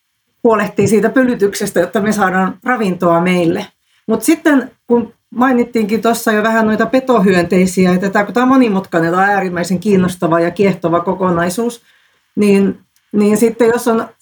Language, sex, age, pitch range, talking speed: Finnish, female, 40-59, 185-235 Hz, 135 wpm